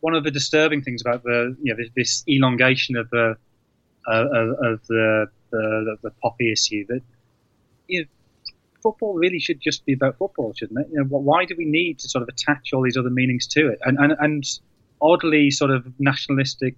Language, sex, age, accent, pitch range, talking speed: English, male, 20-39, British, 120-155 Hz, 200 wpm